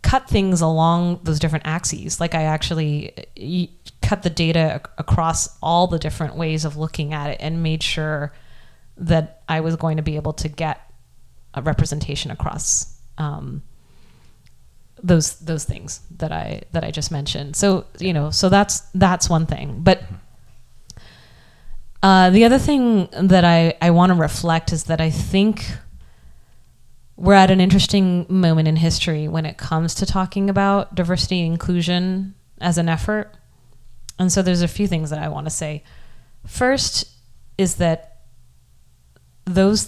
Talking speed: 155 wpm